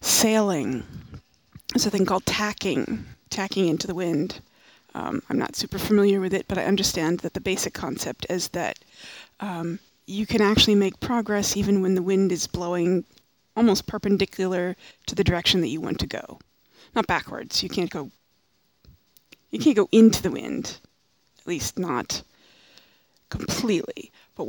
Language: English